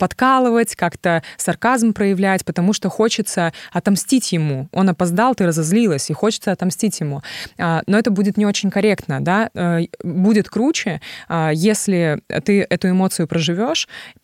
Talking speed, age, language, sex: 130 wpm, 20-39, Russian, female